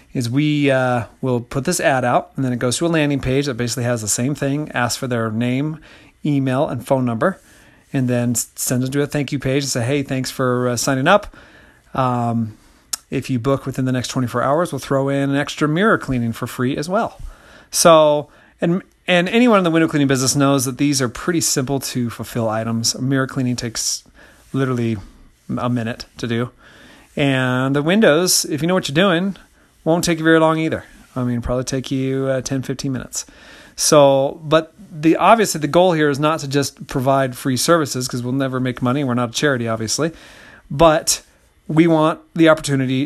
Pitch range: 125-150 Hz